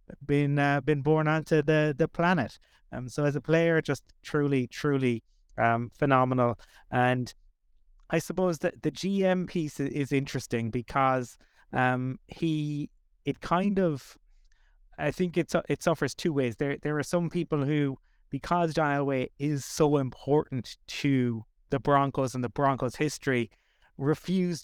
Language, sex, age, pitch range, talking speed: English, male, 30-49, 135-155 Hz, 145 wpm